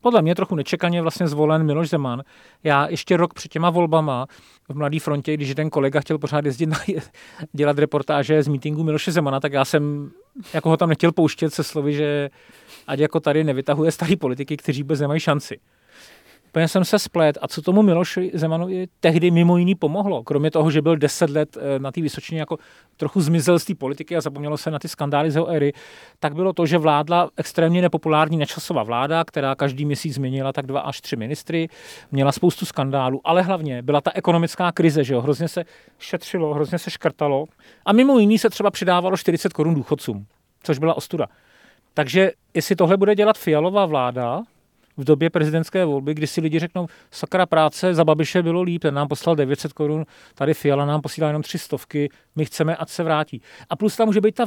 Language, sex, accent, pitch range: Czech, male, native, 145-175 Hz